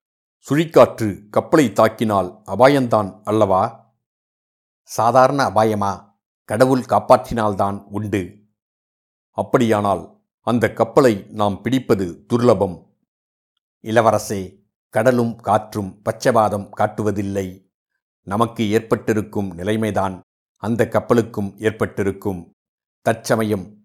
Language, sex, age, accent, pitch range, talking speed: Tamil, male, 60-79, native, 100-120 Hz, 70 wpm